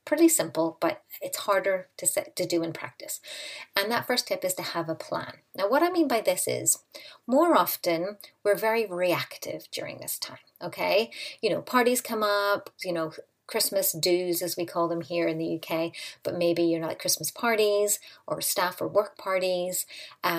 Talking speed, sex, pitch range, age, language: 195 wpm, female, 165-210 Hz, 30-49, English